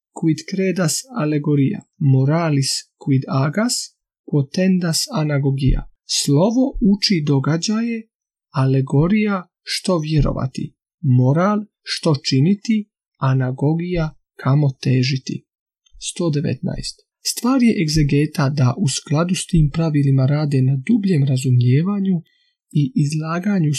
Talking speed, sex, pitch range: 90 wpm, male, 140-190 Hz